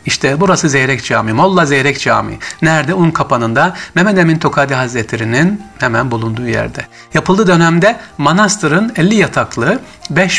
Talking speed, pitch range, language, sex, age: 135 wpm, 125-180 Hz, Turkish, male, 60-79